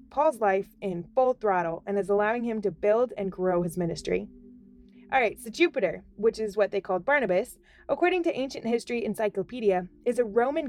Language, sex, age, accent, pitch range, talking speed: English, female, 20-39, American, 190-270 Hz, 185 wpm